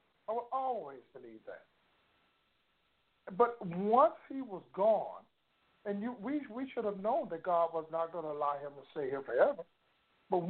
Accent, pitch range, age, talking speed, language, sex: American, 180-235 Hz, 60-79, 170 wpm, English, male